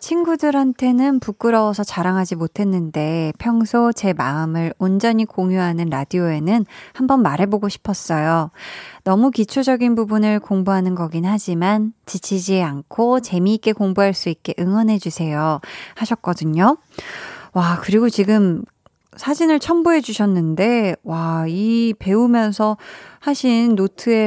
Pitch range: 185-255 Hz